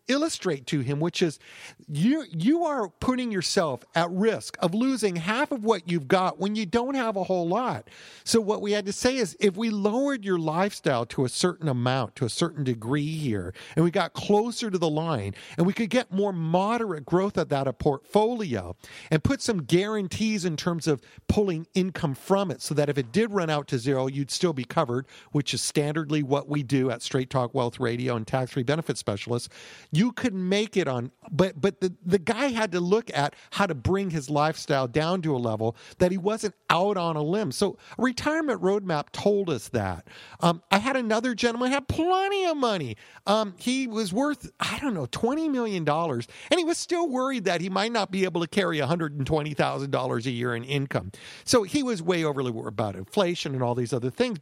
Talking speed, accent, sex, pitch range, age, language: 210 wpm, American, male, 140-215 Hz, 50-69, English